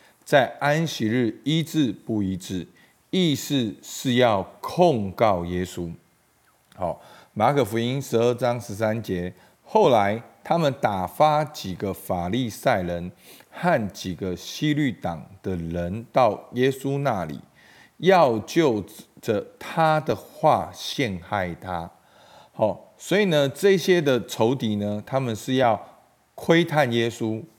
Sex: male